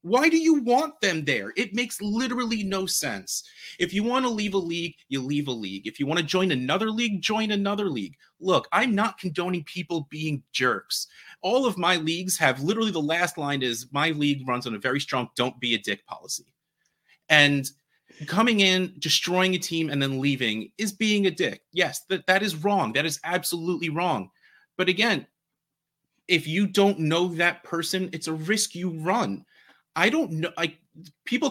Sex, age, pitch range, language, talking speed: male, 30-49, 135-190 Hz, English, 190 wpm